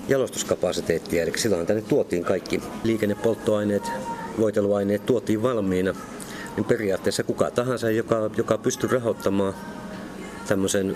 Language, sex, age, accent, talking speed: Finnish, male, 50-69, native, 105 wpm